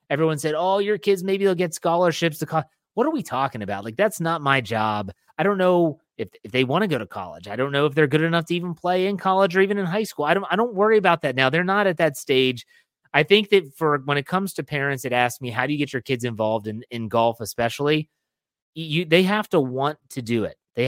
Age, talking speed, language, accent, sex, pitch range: 30-49, 270 wpm, English, American, male, 120-170 Hz